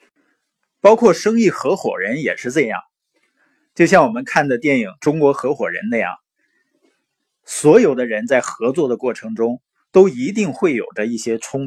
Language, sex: Chinese, male